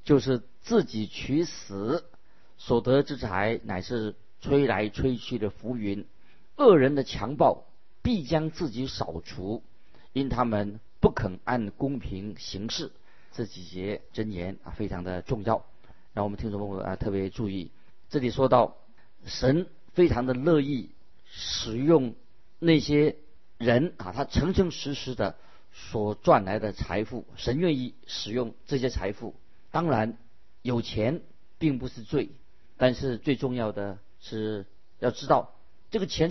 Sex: male